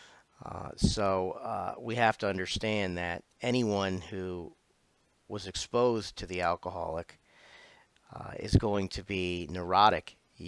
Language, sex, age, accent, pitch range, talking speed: English, male, 40-59, American, 90-100 Hz, 125 wpm